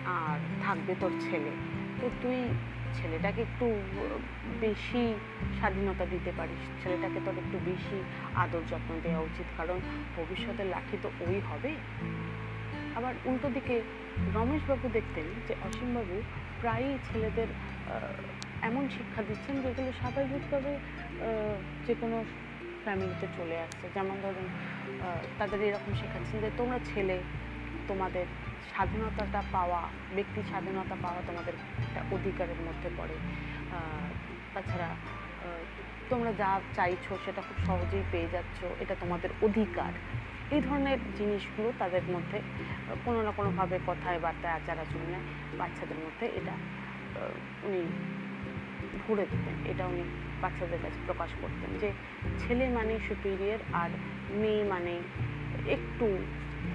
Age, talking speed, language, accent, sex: 30-49, 115 wpm, Bengali, native, female